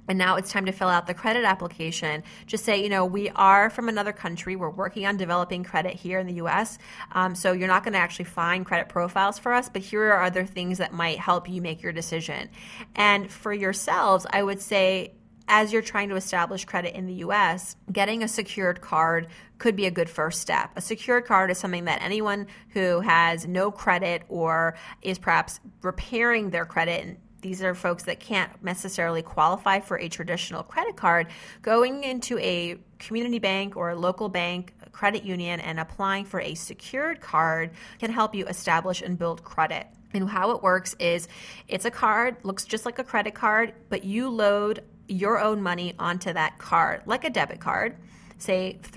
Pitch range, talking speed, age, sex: 175-210 Hz, 195 wpm, 30-49, female